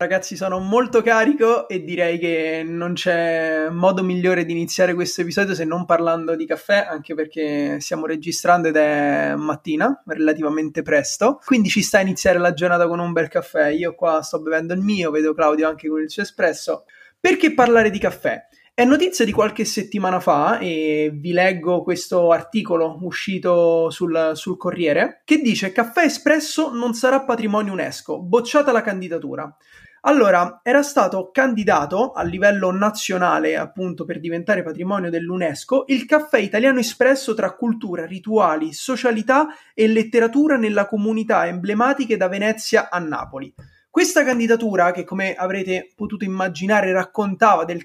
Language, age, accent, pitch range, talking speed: Italian, 20-39, native, 170-230 Hz, 150 wpm